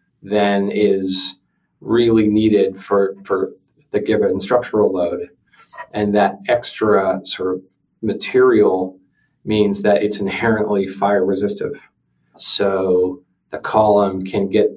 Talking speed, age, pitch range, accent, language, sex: 110 wpm, 40-59, 95-105 Hz, American, English, male